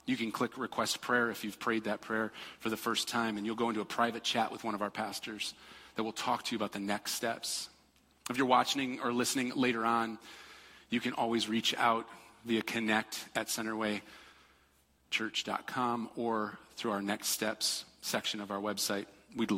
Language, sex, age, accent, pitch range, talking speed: English, male, 40-59, American, 100-120 Hz, 185 wpm